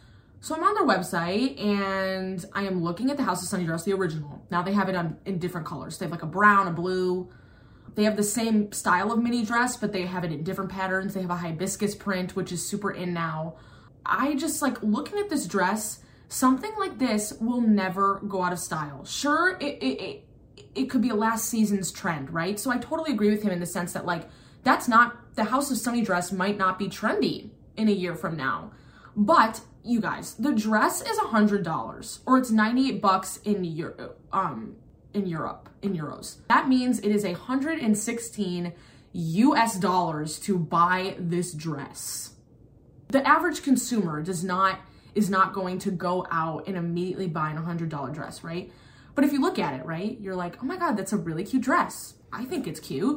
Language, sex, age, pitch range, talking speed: English, female, 20-39, 175-225 Hz, 200 wpm